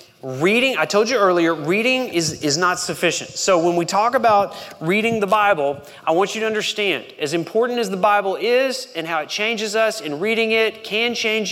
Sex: male